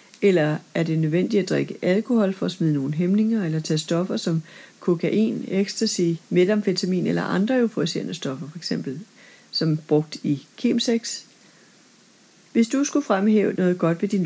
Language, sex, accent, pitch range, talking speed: Danish, female, native, 175-235 Hz, 155 wpm